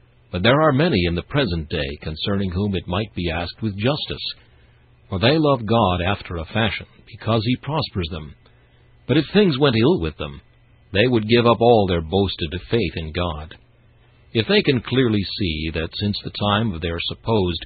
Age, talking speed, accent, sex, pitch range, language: 60-79, 190 wpm, American, male, 90-120 Hz, English